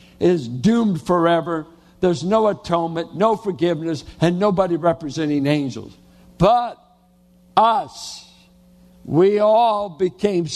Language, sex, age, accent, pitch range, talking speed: English, male, 60-79, American, 160-205 Hz, 95 wpm